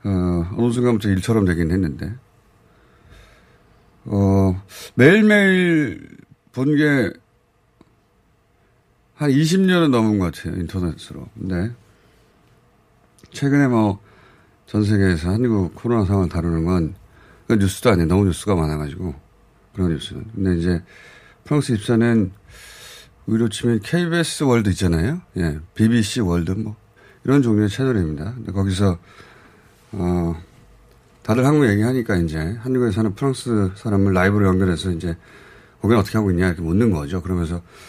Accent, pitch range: native, 90-125 Hz